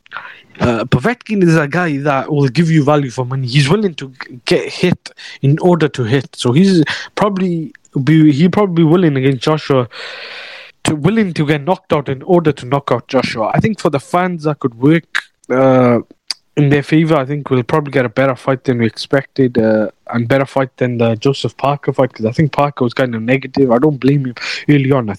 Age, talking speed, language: 20-39, 210 wpm, English